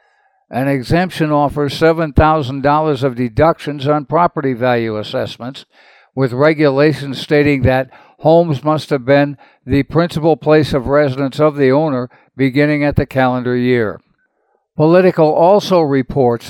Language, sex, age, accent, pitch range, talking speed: English, male, 60-79, American, 135-160 Hz, 125 wpm